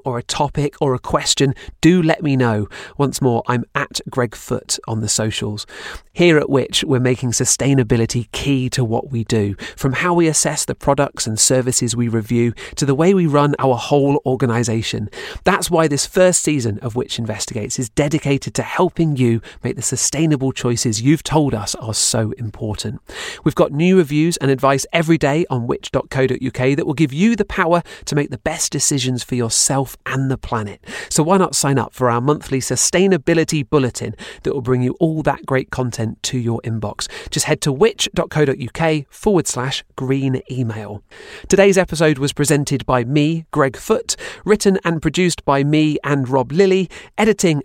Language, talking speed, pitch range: English, 180 wpm, 125-155 Hz